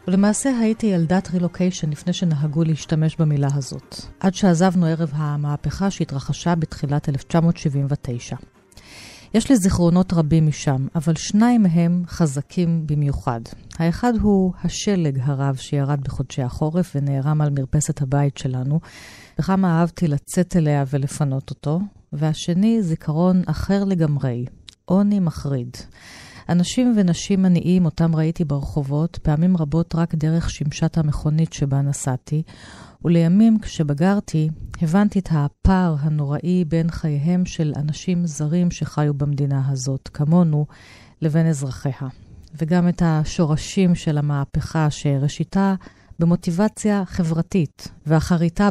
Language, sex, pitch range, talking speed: Hebrew, female, 145-175 Hz, 110 wpm